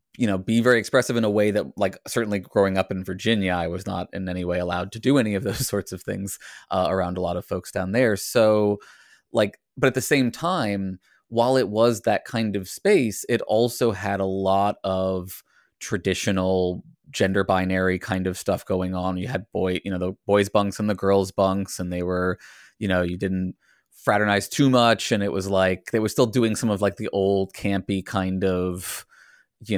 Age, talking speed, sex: 20-39, 210 wpm, male